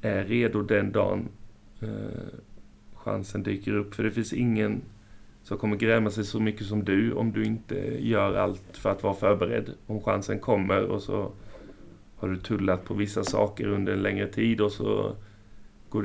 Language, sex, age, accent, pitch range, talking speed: Swedish, male, 30-49, native, 100-110 Hz, 175 wpm